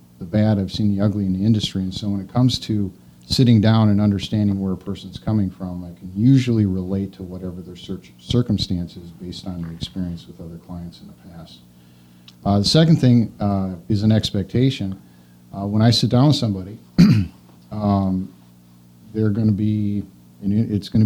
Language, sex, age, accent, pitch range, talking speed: English, male, 50-69, American, 90-105 Hz, 190 wpm